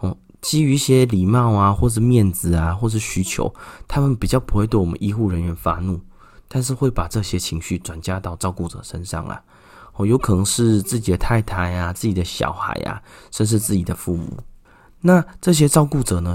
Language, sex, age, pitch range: Chinese, male, 30-49, 90-110 Hz